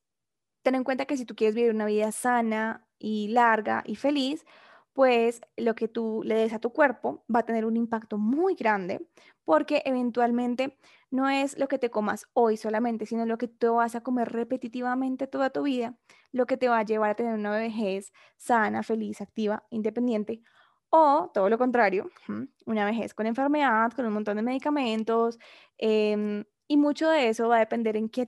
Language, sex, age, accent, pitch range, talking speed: Spanish, female, 10-29, Colombian, 220-265 Hz, 190 wpm